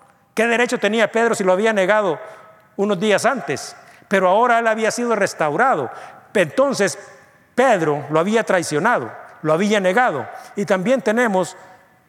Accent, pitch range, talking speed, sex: Mexican, 175-220 Hz, 140 wpm, male